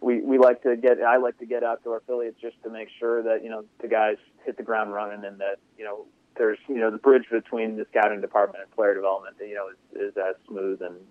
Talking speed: 260 wpm